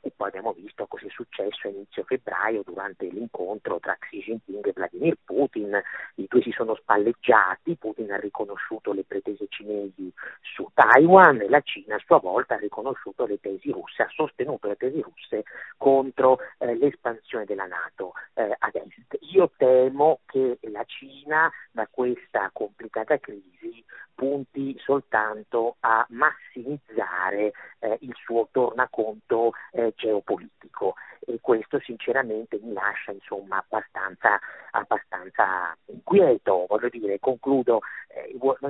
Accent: native